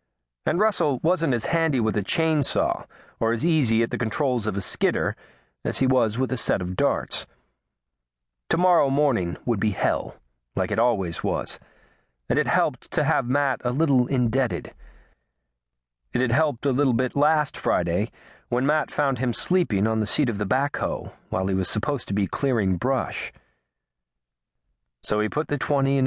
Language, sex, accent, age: English, male, American, 40-59